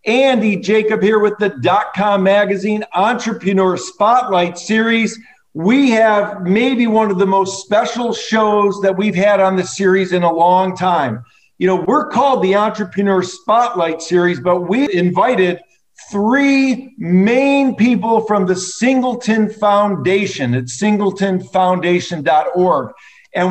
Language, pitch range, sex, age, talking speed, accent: English, 185-230 Hz, male, 50-69, 130 wpm, American